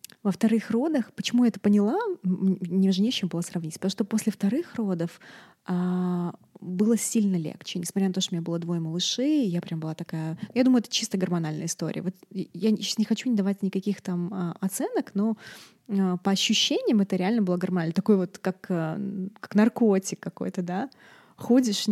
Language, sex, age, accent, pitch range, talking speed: Russian, female, 20-39, native, 180-220 Hz, 180 wpm